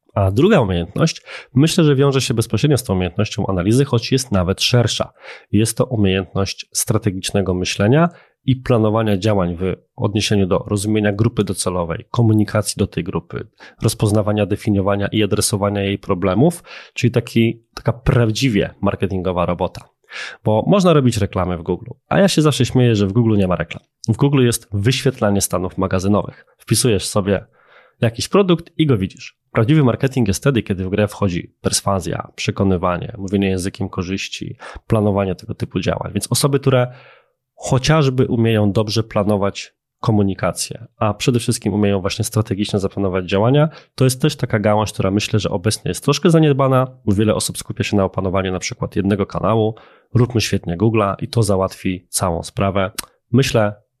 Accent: native